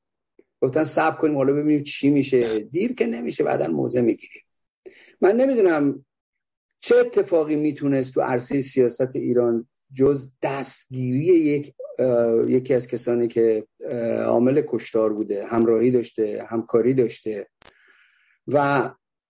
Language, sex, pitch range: Persian, male, 115-155 Hz